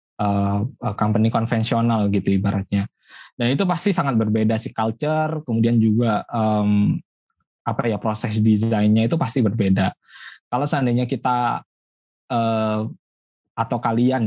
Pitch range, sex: 110-145 Hz, male